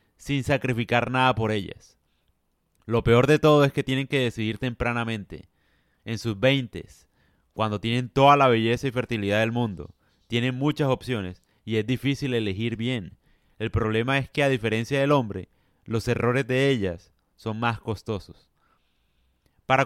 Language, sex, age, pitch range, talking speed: Spanish, male, 30-49, 105-130 Hz, 155 wpm